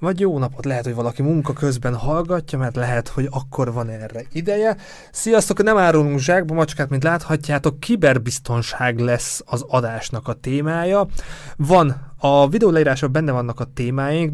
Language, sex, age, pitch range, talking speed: Hungarian, male, 20-39, 125-155 Hz, 155 wpm